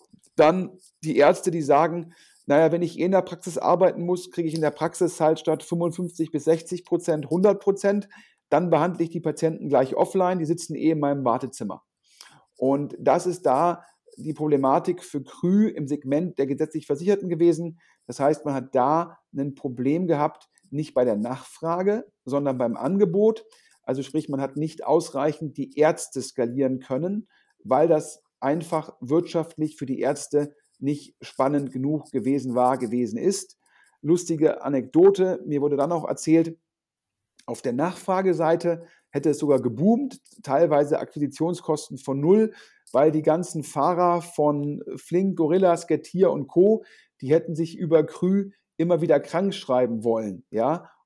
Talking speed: 155 wpm